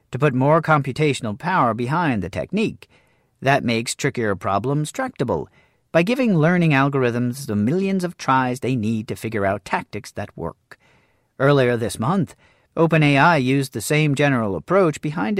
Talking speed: 150 wpm